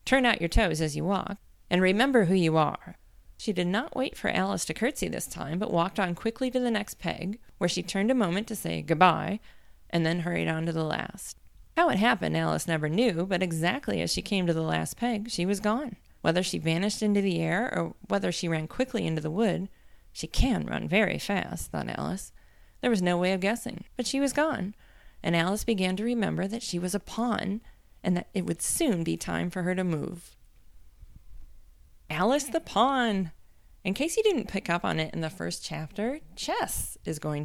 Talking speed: 215 wpm